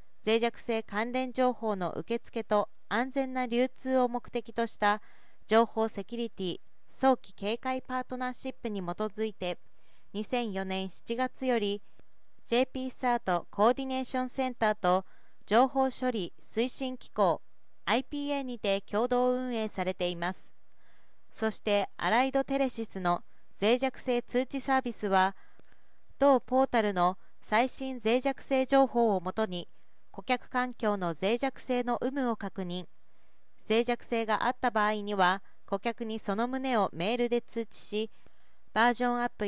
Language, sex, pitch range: Japanese, female, 200-255 Hz